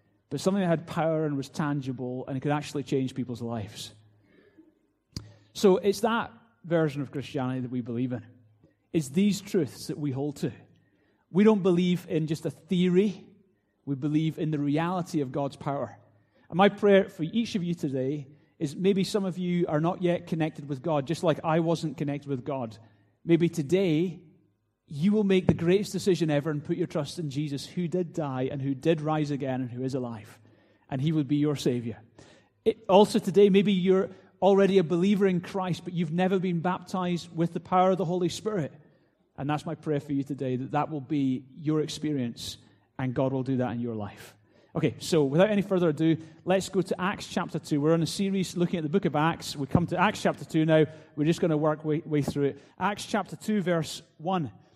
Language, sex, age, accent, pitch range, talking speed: English, male, 30-49, British, 140-180 Hz, 210 wpm